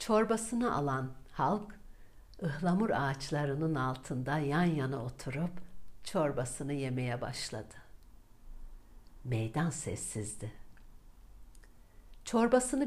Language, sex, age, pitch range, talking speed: Turkish, female, 60-79, 130-190 Hz, 70 wpm